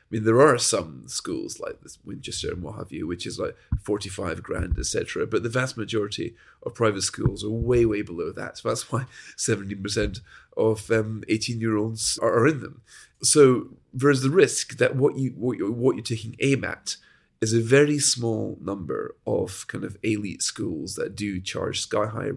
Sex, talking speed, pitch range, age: male, 195 wpm, 105-120 Hz, 40-59